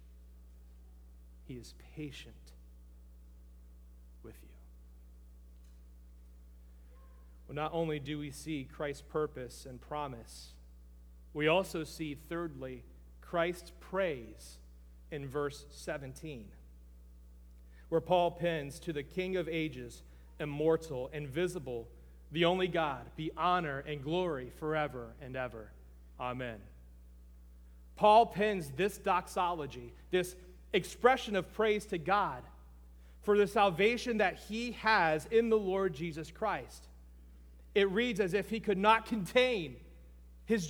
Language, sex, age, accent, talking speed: English, male, 40-59, American, 110 wpm